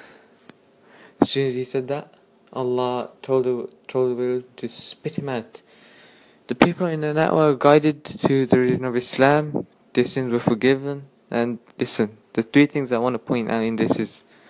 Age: 20-39